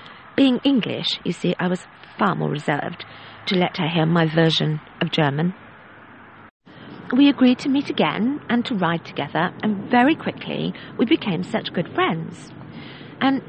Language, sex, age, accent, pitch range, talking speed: English, female, 40-59, British, 180-250 Hz, 155 wpm